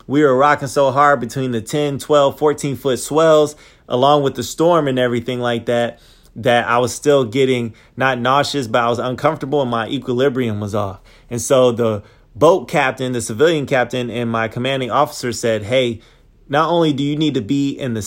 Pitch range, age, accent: 120-145 Hz, 20-39, American